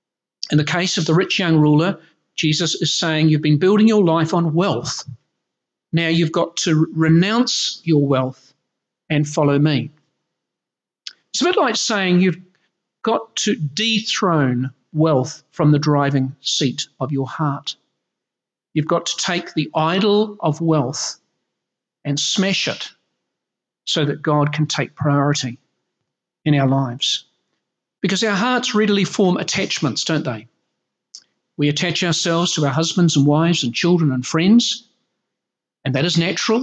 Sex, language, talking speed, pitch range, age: male, English, 145 wpm, 150-195 Hz, 50-69